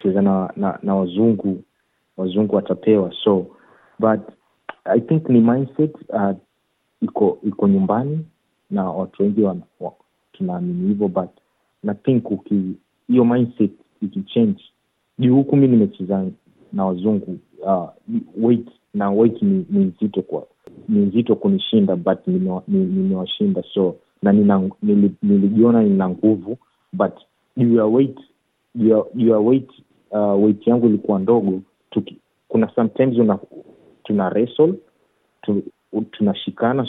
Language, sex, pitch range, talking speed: Swahili, male, 100-130 Hz, 120 wpm